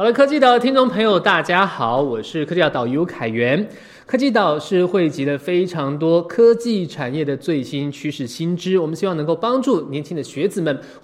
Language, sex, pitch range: Chinese, male, 135-225 Hz